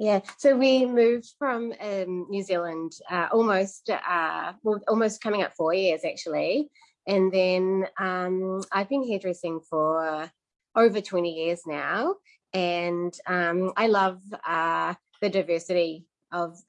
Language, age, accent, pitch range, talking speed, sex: English, 20-39, Australian, 170-220 Hz, 130 wpm, female